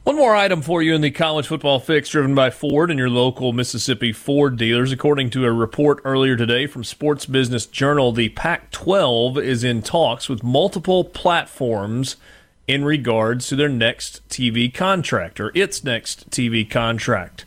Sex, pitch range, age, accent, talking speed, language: male, 125-150 Hz, 40-59, American, 170 wpm, English